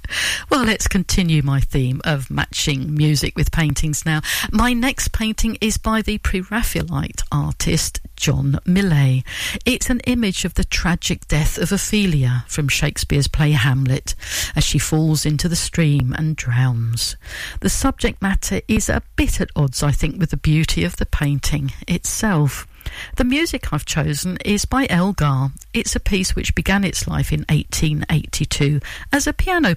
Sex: female